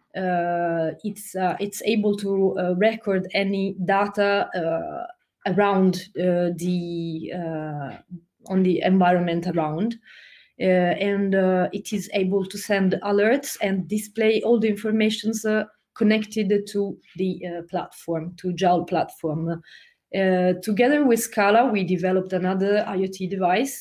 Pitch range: 175-205 Hz